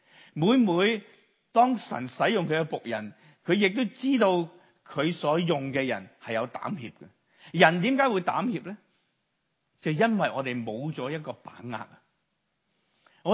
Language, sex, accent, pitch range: Chinese, male, native, 115-185 Hz